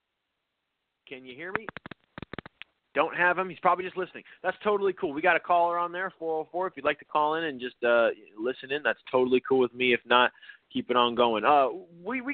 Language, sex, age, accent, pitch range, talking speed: English, male, 30-49, American, 125-170 Hz, 225 wpm